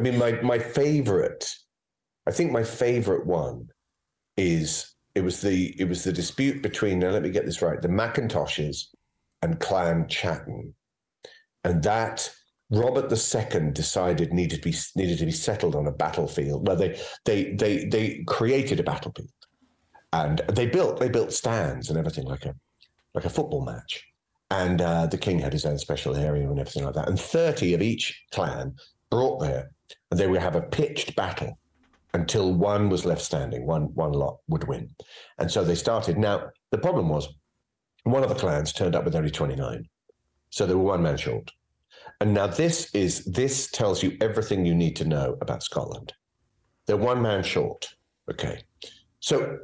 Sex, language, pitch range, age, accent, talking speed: male, English, 85-130 Hz, 40-59, British, 175 wpm